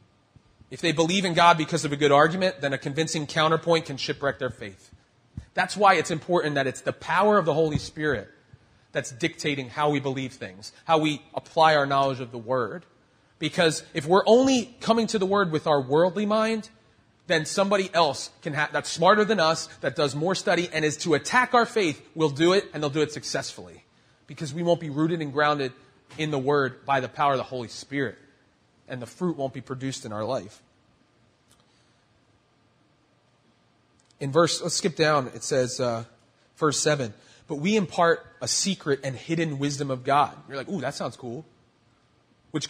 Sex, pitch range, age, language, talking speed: male, 135-180 Hz, 30-49, English, 190 wpm